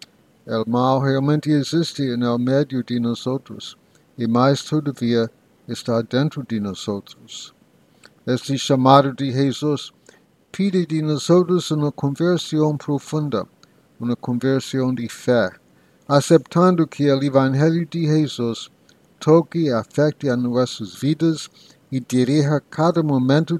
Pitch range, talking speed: 125-155 Hz, 115 wpm